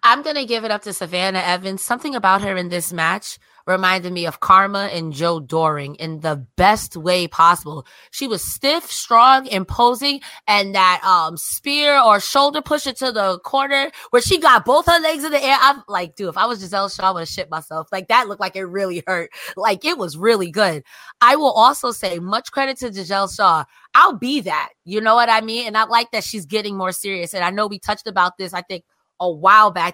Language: English